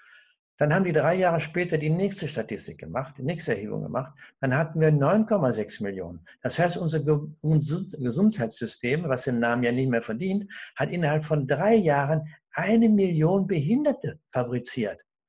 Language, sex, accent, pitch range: German, male, German, 130-185 Hz